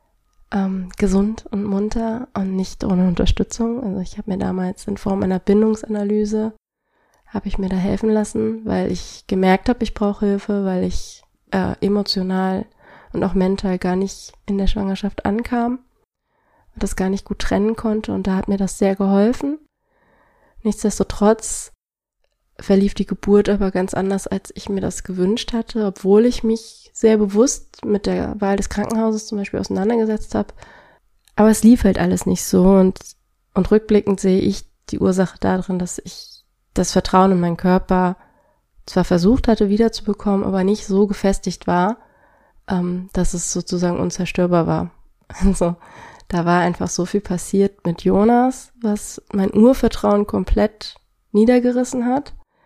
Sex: female